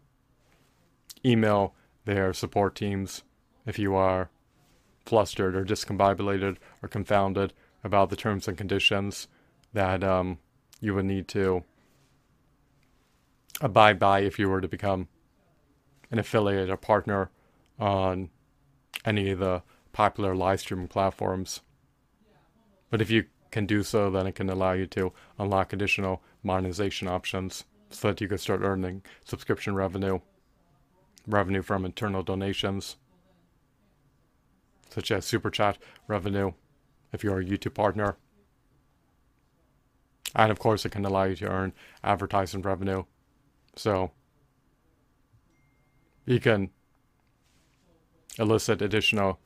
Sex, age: male, 30-49